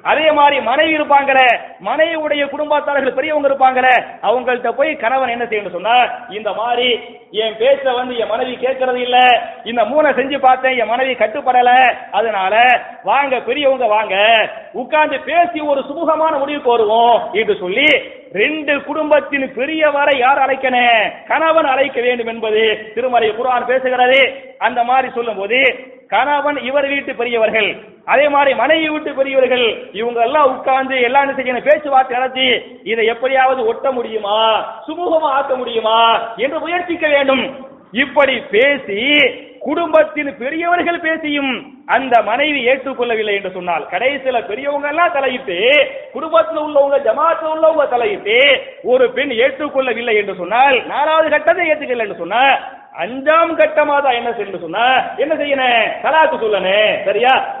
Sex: male